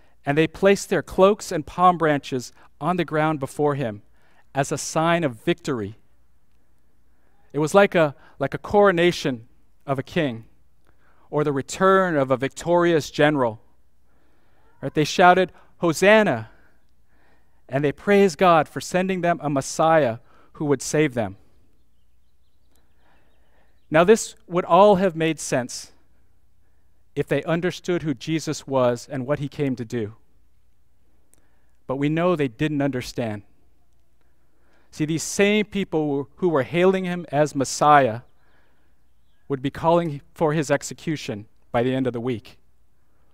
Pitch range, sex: 105-165 Hz, male